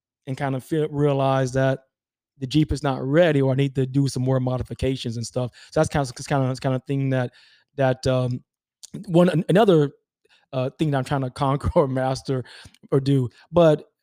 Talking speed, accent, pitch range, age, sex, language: 200 wpm, American, 135-155 Hz, 20-39, male, English